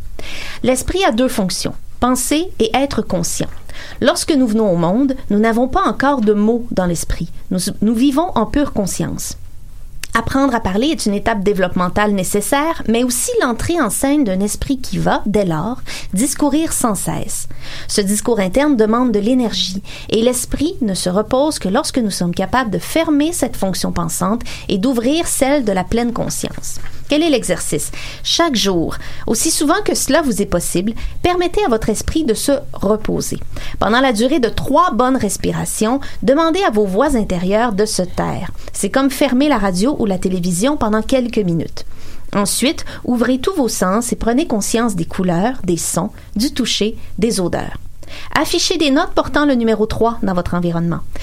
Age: 30-49